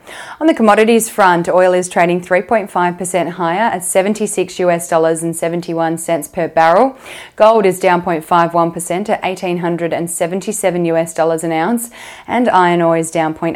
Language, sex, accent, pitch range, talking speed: English, female, Australian, 170-195 Hz, 115 wpm